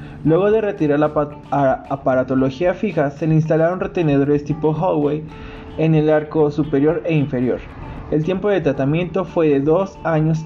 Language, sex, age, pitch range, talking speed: Spanish, male, 20-39, 140-170 Hz, 160 wpm